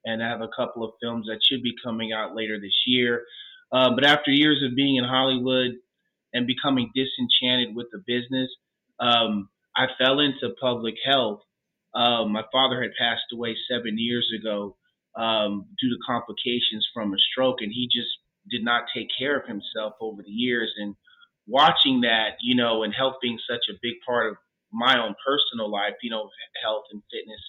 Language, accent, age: English, American, 30-49